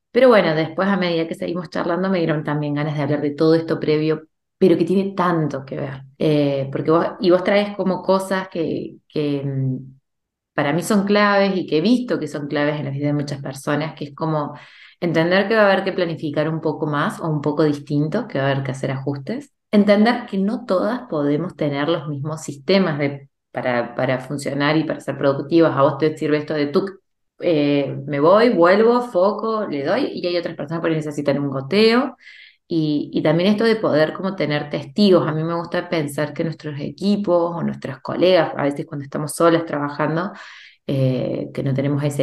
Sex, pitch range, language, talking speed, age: female, 145-180 Hz, Spanish, 200 wpm, 20-39